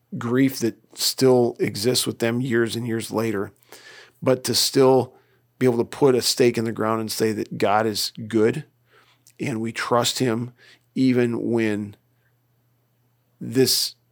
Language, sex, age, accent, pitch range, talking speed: English, male, 40-59, American, 110-125 Hz, 150 wpm